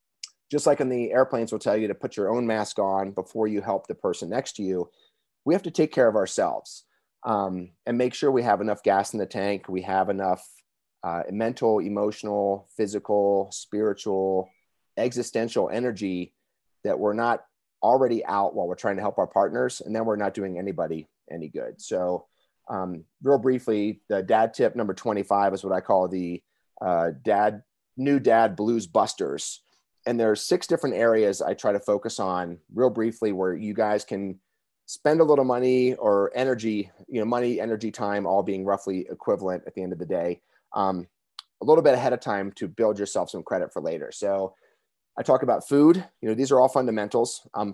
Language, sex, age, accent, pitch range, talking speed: English, male, 30-49, American, 95-115 Hz, 195 wpm